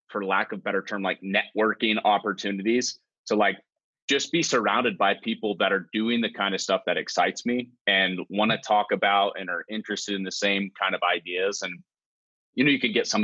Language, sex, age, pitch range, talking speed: English, male, 30-49, 100-125 Hz, 215 wpm